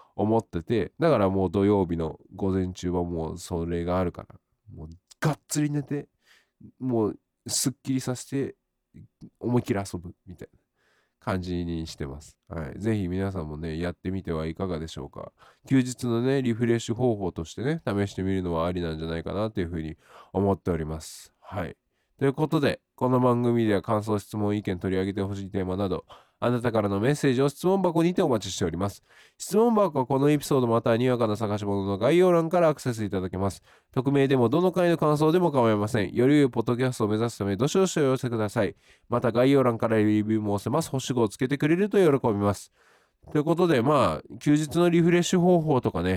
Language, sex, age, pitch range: Japanese, male, 20-39, 95-135 Hz